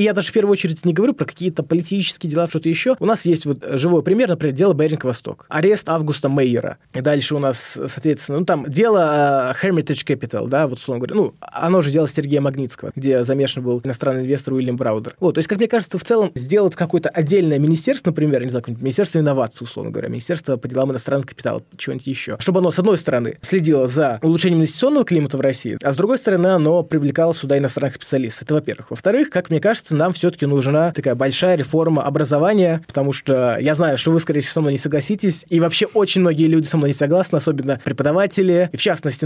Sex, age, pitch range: male, 20-39, 135-175 Hz